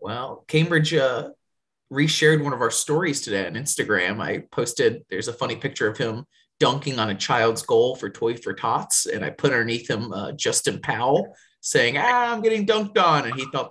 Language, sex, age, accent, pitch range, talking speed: English, male, 30-49, American, 120-175 Hz, 195 wpm